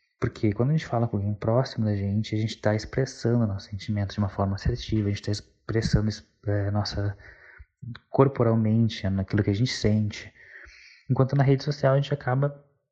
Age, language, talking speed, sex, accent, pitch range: 20-39, Portuguese, 185 wpm, male, Brazilian, 105-125 Hz